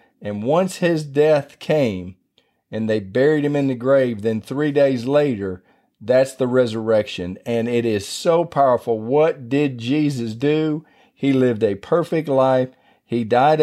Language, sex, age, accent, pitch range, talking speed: English, male, 40-59, American, 115-150 Hz, 155 wpm